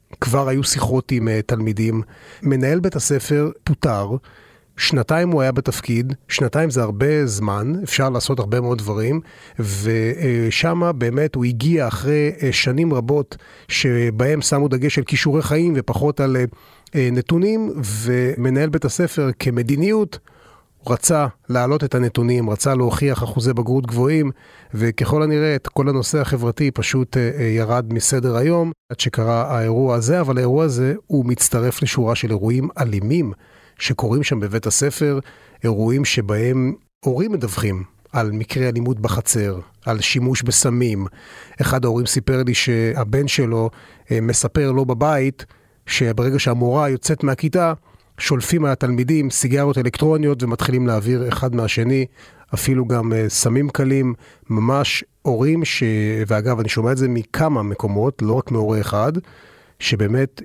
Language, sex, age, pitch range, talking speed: Hebrew, male, 30-49, 115-140 Hz, 130 wpm